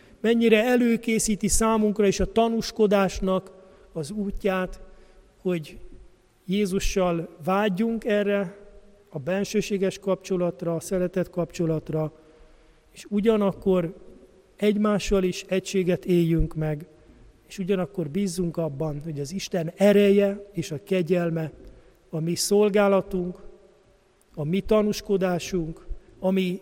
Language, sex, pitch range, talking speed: Hungarian, male, 165-195 Hz, 95 wpm